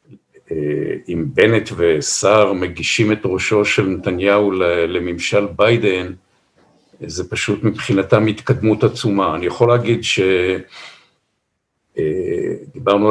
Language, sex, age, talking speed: Hebrew, male, 50-69, 85 wpm